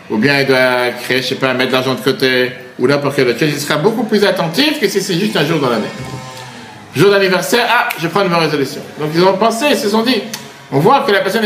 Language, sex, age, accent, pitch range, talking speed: French, male, 60-79, French, 140-205 Hz, 270 wpm